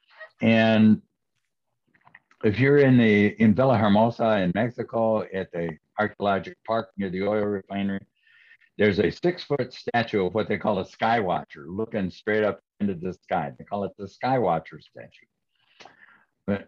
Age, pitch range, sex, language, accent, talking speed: 60-79, 90-110 Hz, male, English, American, 160 wpm